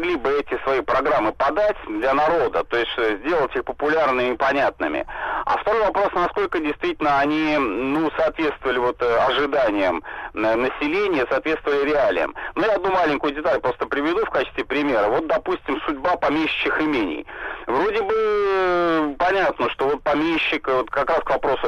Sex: male